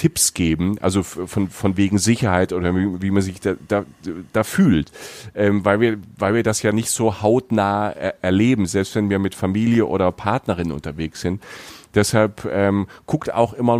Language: German